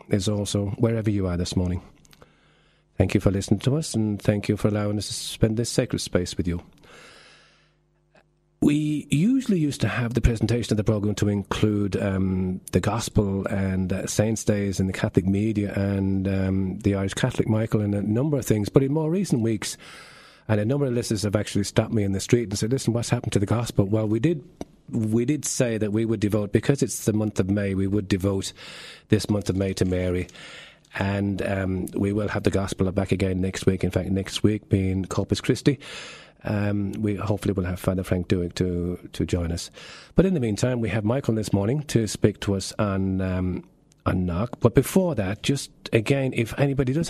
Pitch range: 95-120 Hz